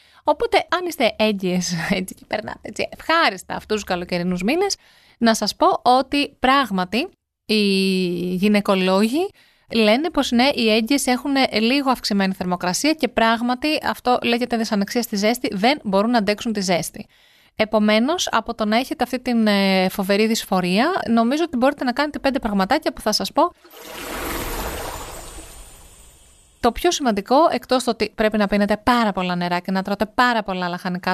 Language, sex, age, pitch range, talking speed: Greek, female, 30-49, 195-250 Hz, 155 wpm